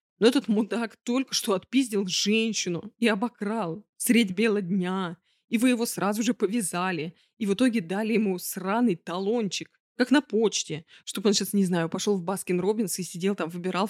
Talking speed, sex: 175 wpm, female